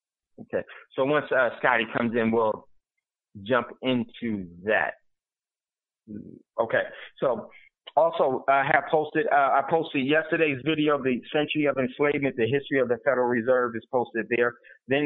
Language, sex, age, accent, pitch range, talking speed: English, male, 30-49, American, 125-150 Hz, 150 wpm